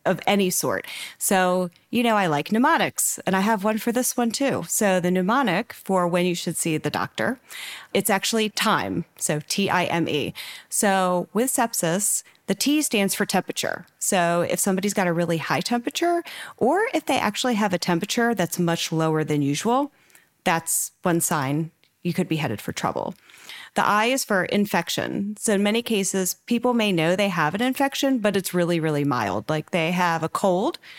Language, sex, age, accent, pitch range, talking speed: English, female, 30-49, American, 165-210 Hz, 185 wpm